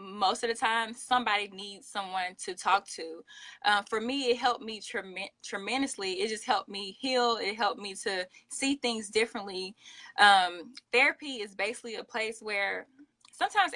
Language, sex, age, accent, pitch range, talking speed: English, female, 20-39, American, 195-245 Hz, 160 wpm